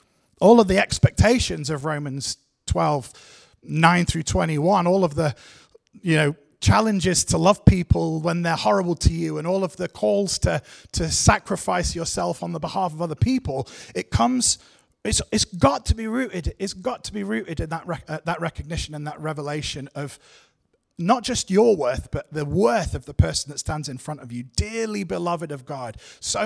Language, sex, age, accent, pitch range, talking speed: English, male, 30-49, British, 130-175 Hz, 190 wpm